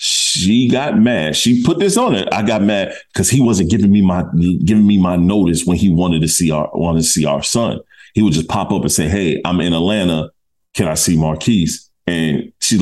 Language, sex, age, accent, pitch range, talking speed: English, male, 40-59, American, 85-105 Hz, 230 wpm